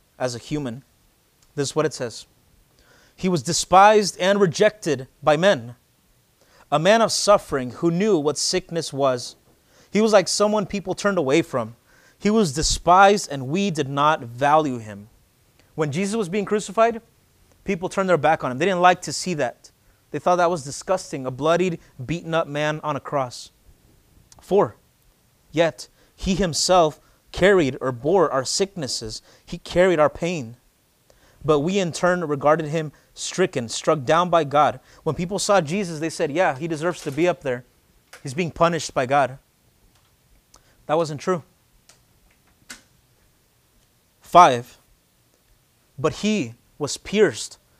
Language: English